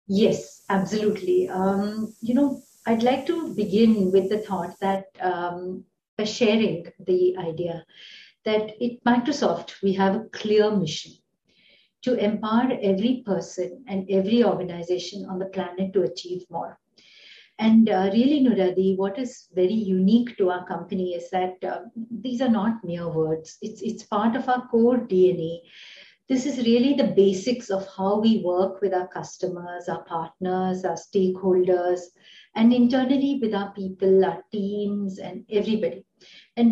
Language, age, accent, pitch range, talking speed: English, 50-69, Indian, 185-235 Hz, 150 wpm